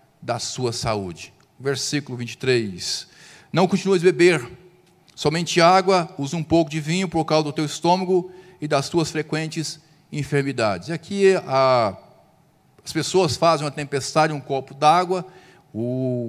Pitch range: 150-190 Hz